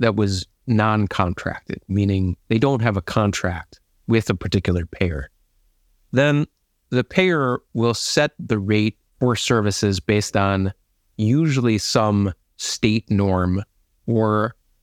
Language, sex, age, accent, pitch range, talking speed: English, male, 30-49, American, 95-115 Hz, 115 wpm